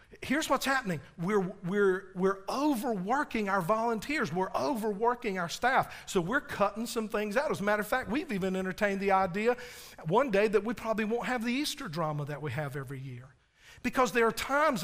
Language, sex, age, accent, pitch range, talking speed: English, male, 50-69, American, 155-215 Hz, 190 wpm